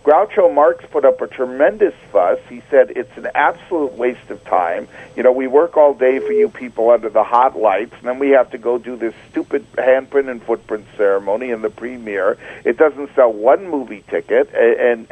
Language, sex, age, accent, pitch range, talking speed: English, male, 50-69, American, 110-135 Hz, 200 wpm